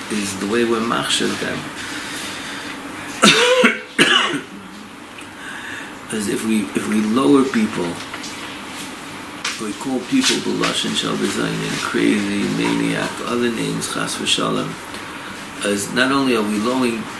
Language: English